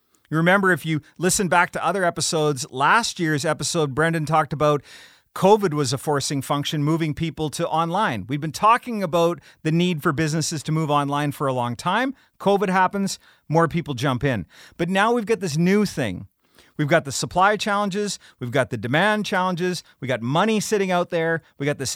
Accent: American